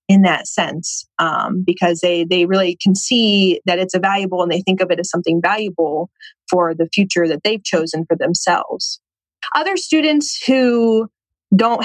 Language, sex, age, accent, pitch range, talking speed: English, female, 20-39, American, 175-205 Hz, 165 wpm